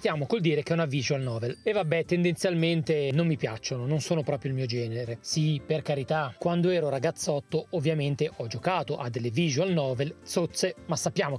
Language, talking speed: Italian, 190 wpm